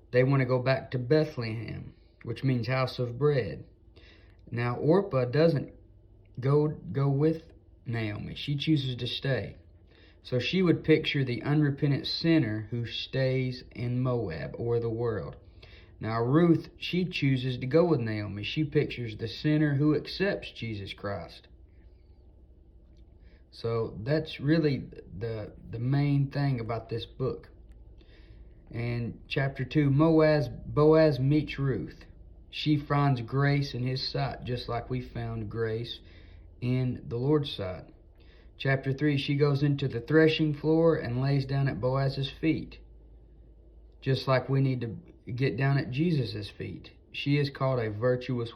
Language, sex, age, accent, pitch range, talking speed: English, male, 40-59, American, 105-140 Hz, 140 wpm